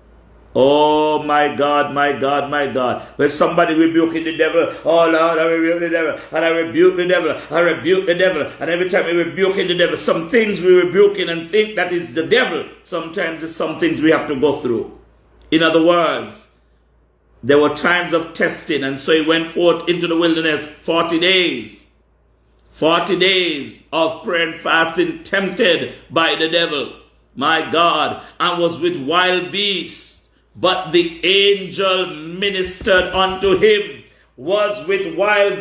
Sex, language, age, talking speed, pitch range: male, English, 50-69, 165 wpm, 150-190 Hz